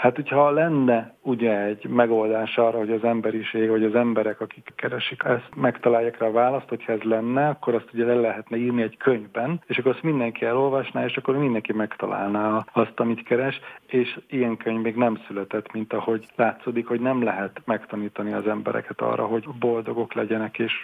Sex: male